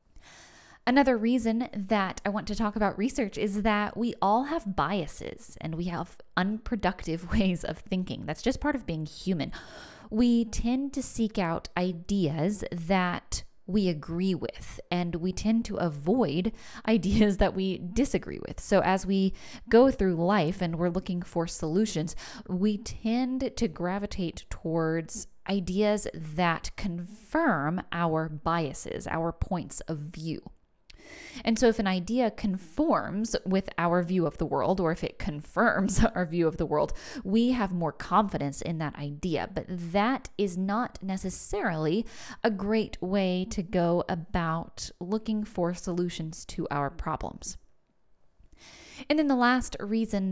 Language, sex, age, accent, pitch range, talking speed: English, female, 10-29, American, 170-220 Hz, 145 wpm